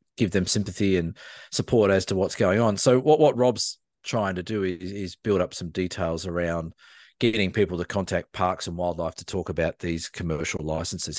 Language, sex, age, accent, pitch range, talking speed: English, male, 40-59, Australian, 90-110 Hz, 200 wpm